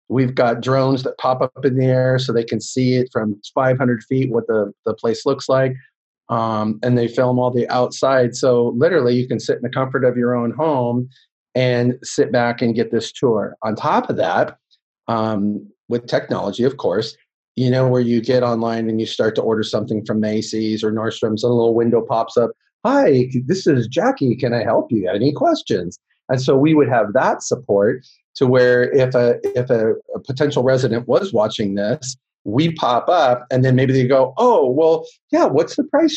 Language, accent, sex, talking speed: English, American, male, 205 wpm